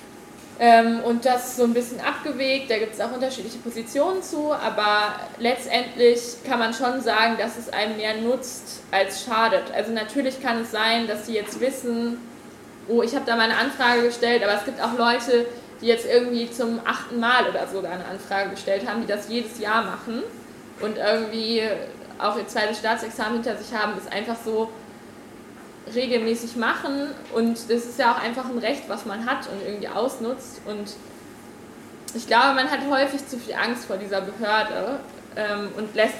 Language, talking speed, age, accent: German, 180 wpm, 20-39, German